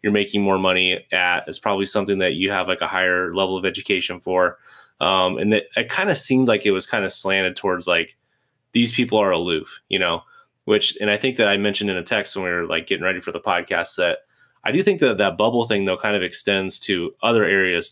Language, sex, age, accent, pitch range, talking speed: English, male, 20-39, American, 95-120 Hz, 245 wpm